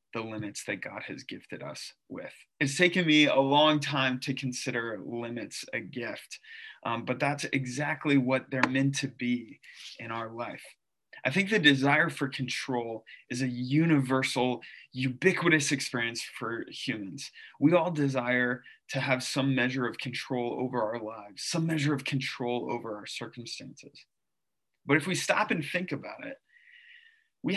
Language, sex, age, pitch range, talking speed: English, male, 20-39, 120-140 Hz, 155 wpm